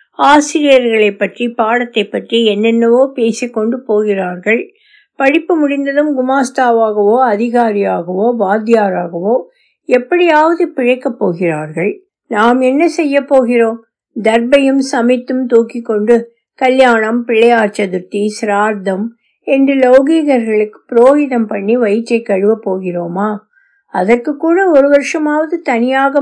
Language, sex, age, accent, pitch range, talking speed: Tamil, female, 60-79, native, 215-285 Hz, 80 wpm